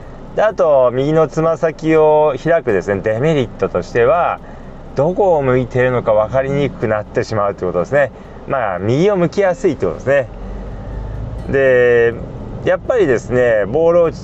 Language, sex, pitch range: Japanese, male, 125-185 Hz